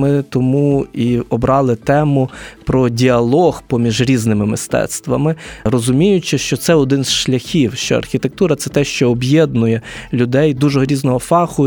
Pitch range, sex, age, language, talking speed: 120-145 Hz, male, 20-39, Ukrainian, 140 wpm